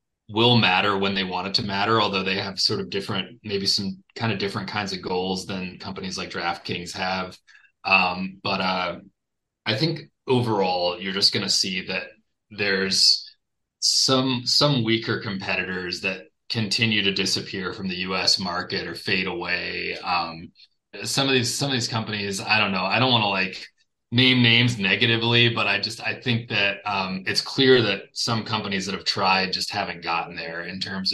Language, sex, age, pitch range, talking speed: English, male, 30-49, 95-110 Hz, 185 wpm